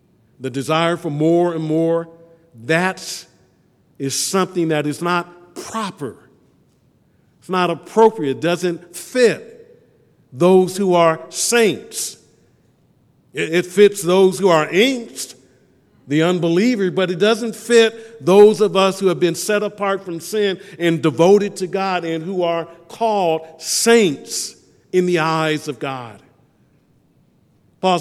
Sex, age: male, 50-69